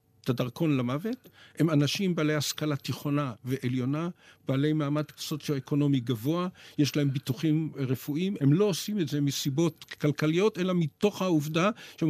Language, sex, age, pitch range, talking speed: Hebrew, male, 50-69, 145-180 Hz, 140 wpm